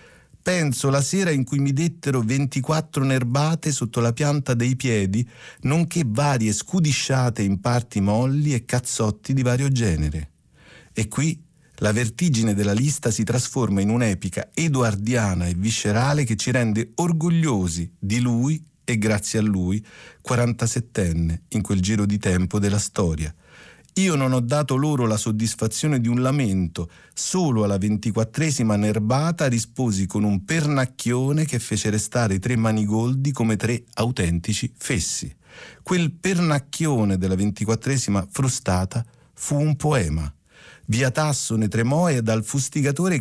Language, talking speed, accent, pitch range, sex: Italian, 135 wpm, native, 105-140 Hz, male